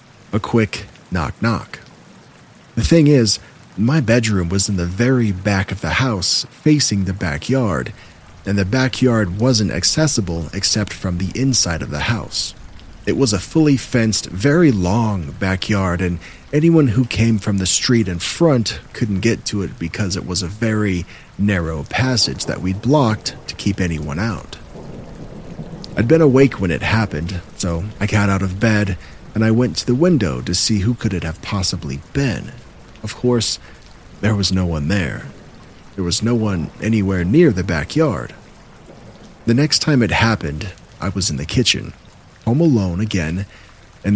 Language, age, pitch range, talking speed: English, 40-59, 90-120 Hz, 165 wpm